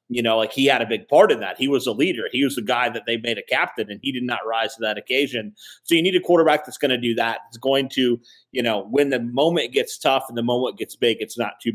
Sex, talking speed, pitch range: male, 300 wpm, 120-140 Hz